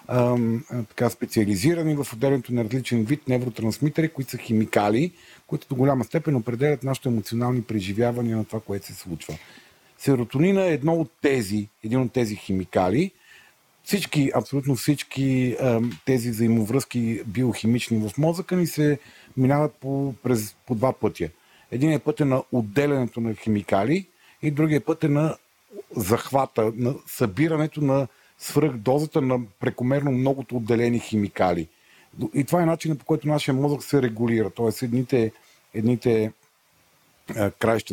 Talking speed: 140 wpm